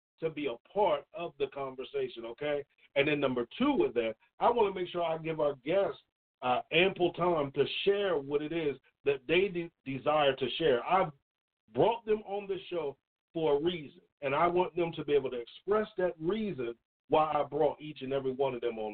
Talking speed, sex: 210 wpm, male